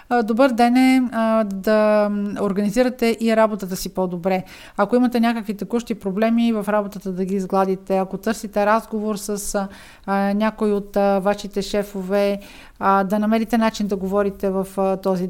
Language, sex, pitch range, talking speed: Bulgarian, female, 195-225 Hz, 135 wpm